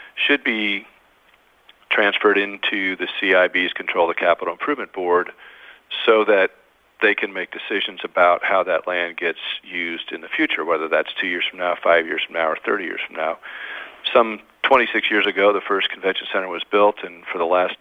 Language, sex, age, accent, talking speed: English, male, 40-59, American, 190 wpm